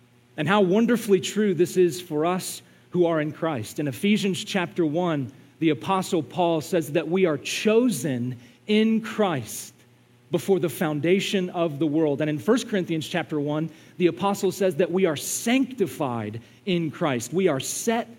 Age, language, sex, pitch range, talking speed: 40-59, English, male, 120-180 Hz, 165 wpm